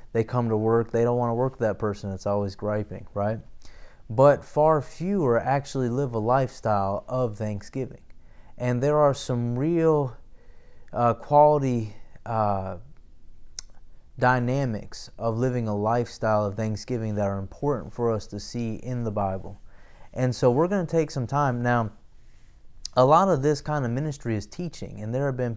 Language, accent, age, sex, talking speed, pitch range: English, American, 20-39, male, 170 wpm, 110-140 Hz